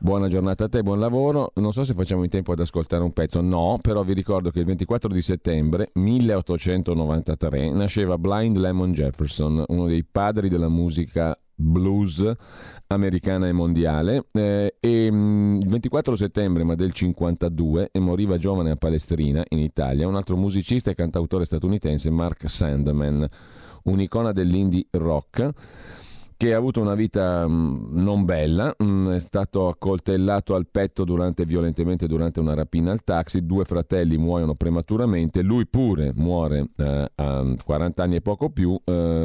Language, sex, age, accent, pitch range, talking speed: Italian, male, 40-59, native, 80-100 Hz, 145 wpm